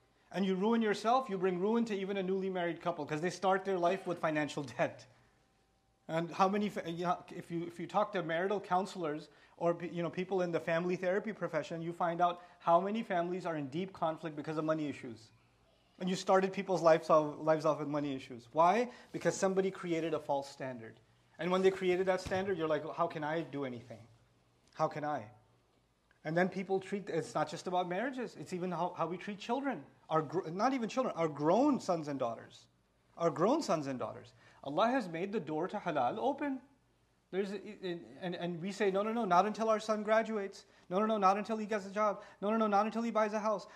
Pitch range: 170-215 Hz